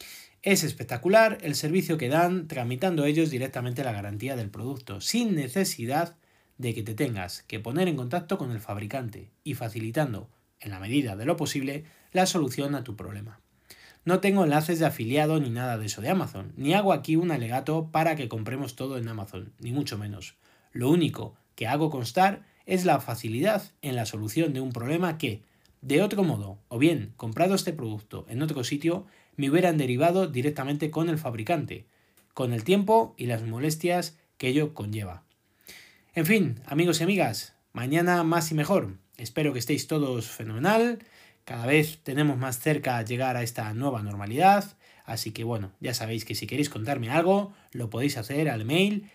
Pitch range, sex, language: 115-170 Hz, male, Spanish